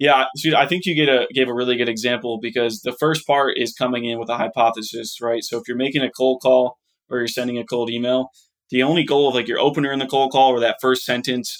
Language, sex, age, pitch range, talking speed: English, male, 20-39, 120-130 Hz, 265 wpm